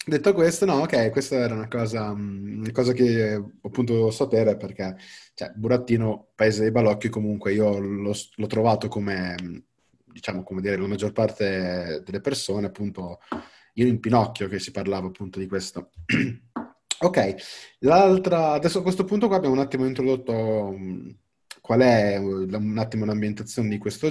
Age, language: 20-39, Italian